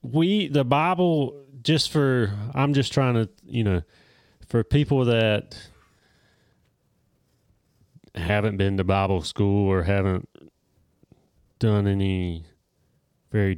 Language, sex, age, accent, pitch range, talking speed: English, male, 30-49, American, 100-120 Hz, 105 wpm